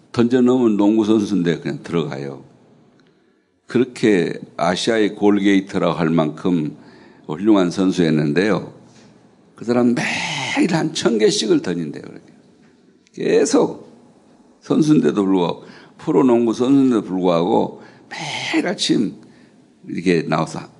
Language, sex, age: Korean, male, 60-79